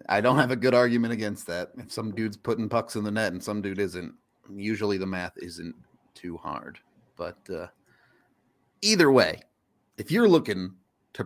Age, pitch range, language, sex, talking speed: 30-49, 100-130 Hz, English, male, 180 wpm